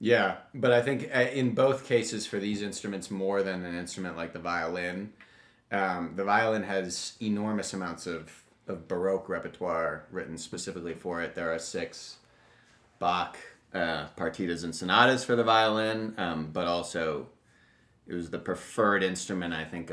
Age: 30-49